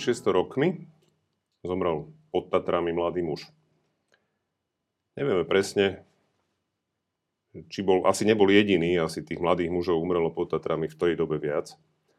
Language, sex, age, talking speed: Slovak, male, 40-59, 125 wpm